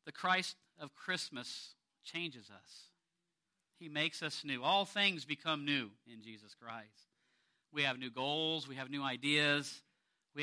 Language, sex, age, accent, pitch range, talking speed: English, male, 50-69, American, 140-180 Hz, 150 wpm